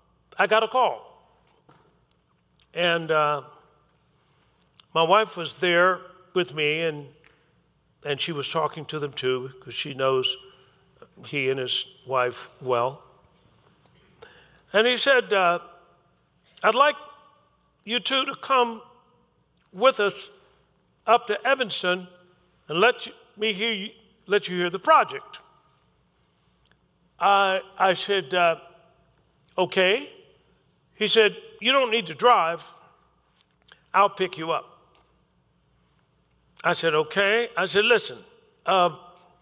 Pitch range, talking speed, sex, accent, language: 150-230 Hz, 120 wpm, male, American, English